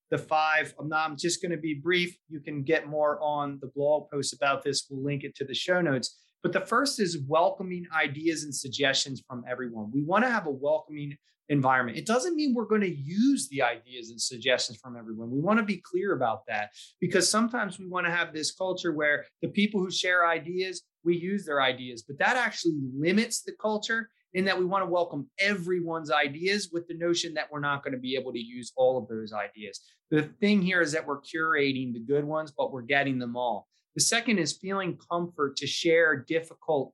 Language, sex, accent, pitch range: English, male, American, 140-180 Hz